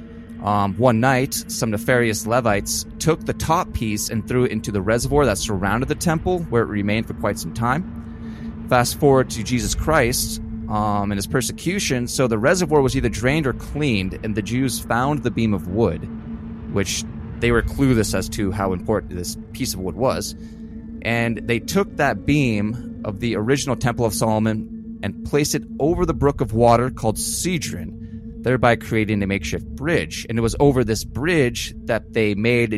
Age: 20-39